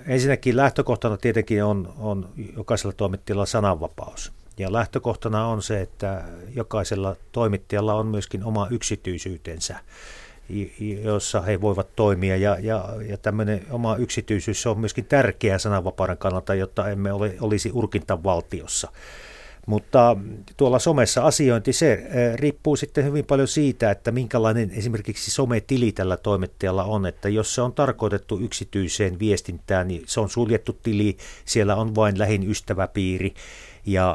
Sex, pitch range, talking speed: male, 95-115 Hz, 130 wpm